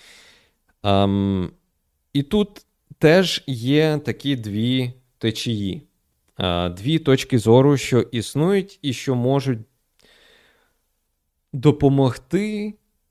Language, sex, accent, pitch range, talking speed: Ukrainian, male, native, 95-140 Hz, 80 wpm